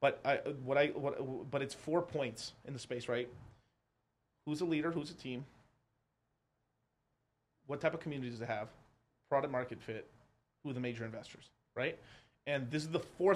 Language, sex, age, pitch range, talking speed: English, male, 30-49, 120-140 Hz, 180 wpm